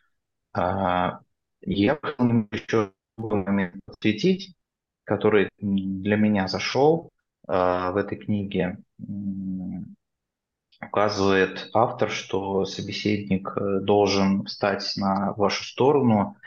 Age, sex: 20-39, male